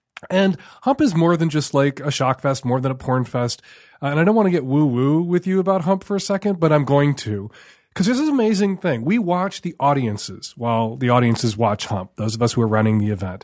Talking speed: 250 wpm